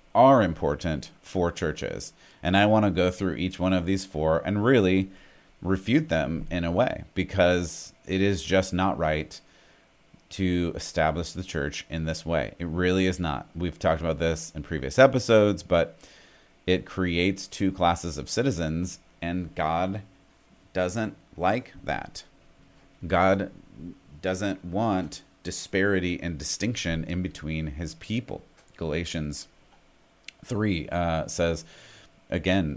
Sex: male